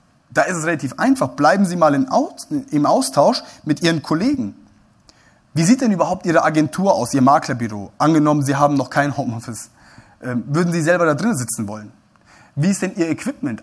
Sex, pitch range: male, 130-170 Hz